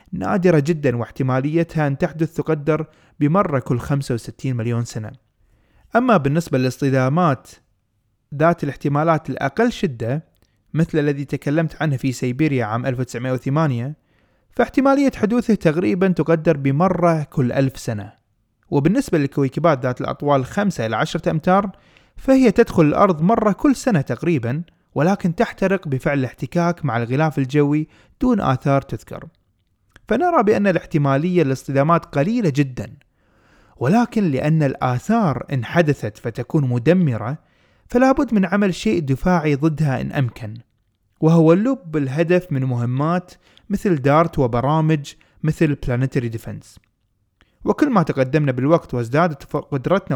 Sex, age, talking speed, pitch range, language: male, 30-49, 115 wpm, 125-170 Hz, Arabic